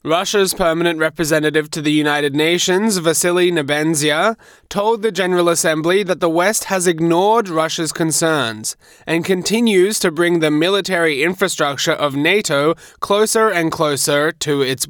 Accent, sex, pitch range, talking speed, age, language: Australian, male, 150-180 Hz, 135 wpm, 20-39, English